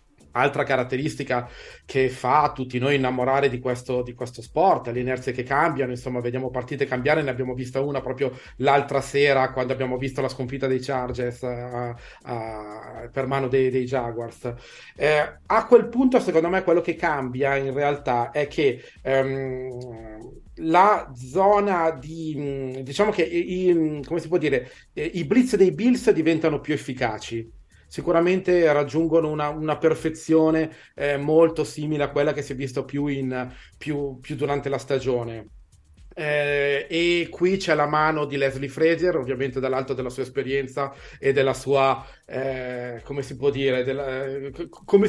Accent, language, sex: native, Italian, male